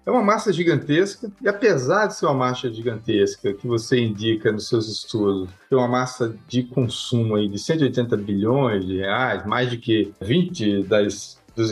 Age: 40-59